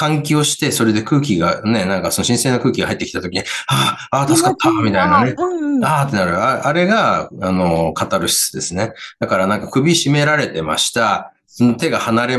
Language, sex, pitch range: Japanese, male, 95-155 Hz